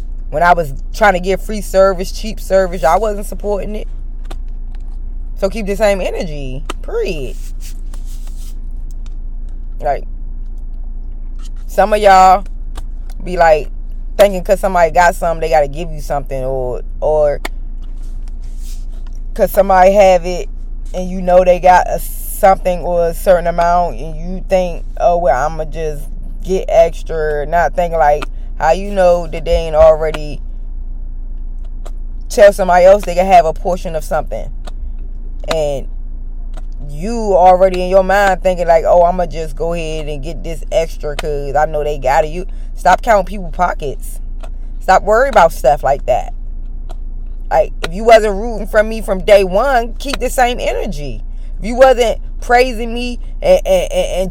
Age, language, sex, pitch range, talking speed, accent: 20-39, English, female, 160-205 Hz, 155 wpm, American